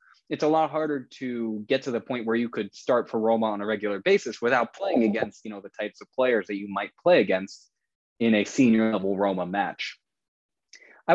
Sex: male